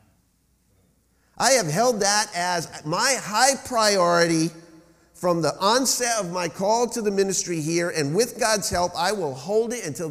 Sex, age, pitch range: male, 50-69, 130-205 Hz